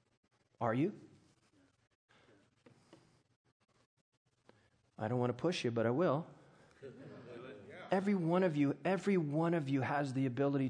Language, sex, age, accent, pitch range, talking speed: English, male, 40-59, American, 125-165 Hz, 125 wpm